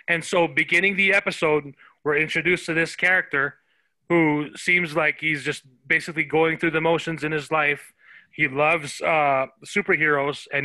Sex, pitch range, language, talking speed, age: male, 145-170 Hz, English, 160 wpm, 20-39